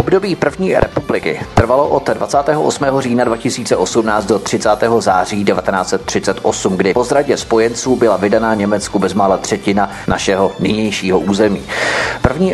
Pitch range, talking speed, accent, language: 105-130 Hz, 120 wpm, native, Czech